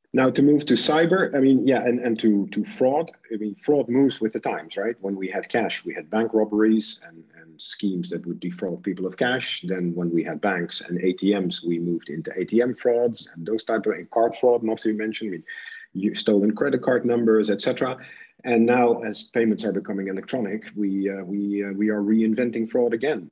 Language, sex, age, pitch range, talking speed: English, male, 50-69, 95-120 Hz, 215 wpm